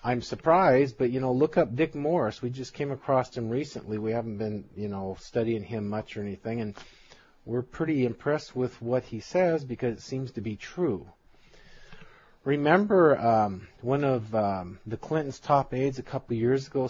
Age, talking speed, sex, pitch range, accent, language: 40-59, 190 wpm, male, 115-140 Hz, American, English